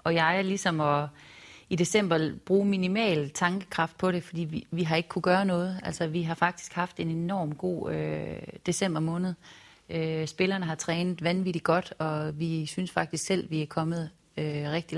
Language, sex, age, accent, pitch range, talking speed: Danish, female, 30-49, native, 160-185 Hz, 190 wpm